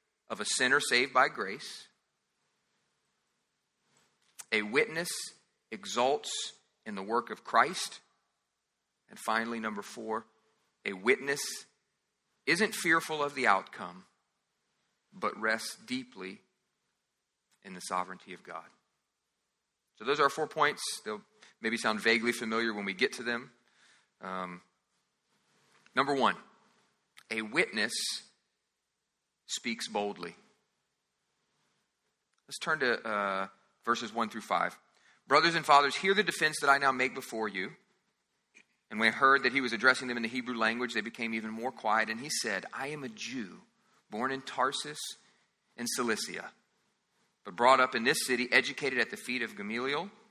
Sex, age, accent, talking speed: male, 40-59, American, 140 wpm